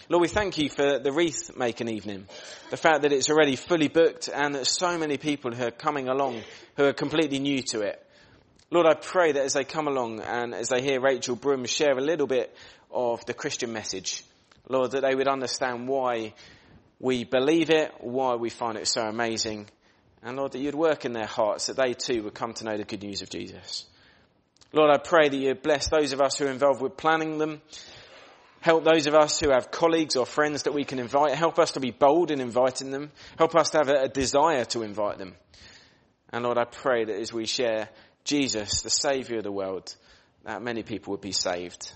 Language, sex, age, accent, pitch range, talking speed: English, male, 30-49, British, 115-145 Hz, 215 wpm